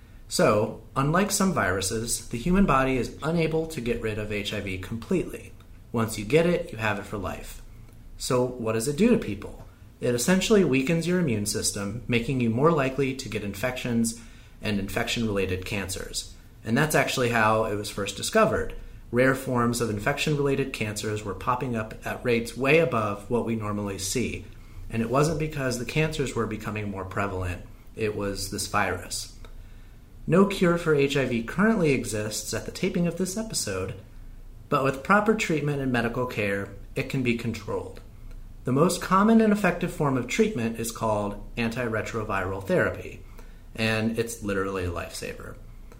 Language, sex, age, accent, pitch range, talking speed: English, male, 30-49, American, 105-135 Hz, 165 wpm